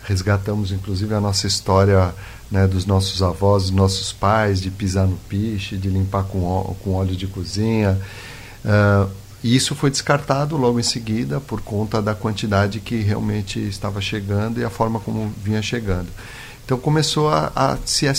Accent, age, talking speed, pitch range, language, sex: Brazilian, 50-69, 170 wpm, 100-120 Hz, Portuguese, male